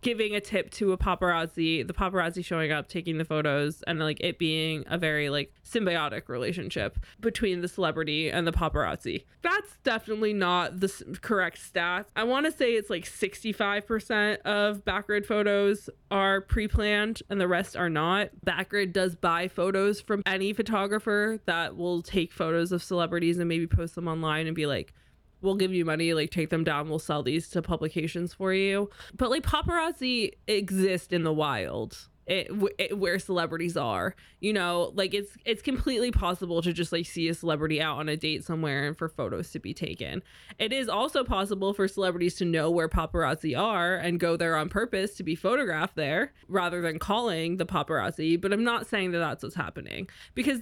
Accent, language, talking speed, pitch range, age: American, English, 185 wpm, 165-205 Hz, 20-39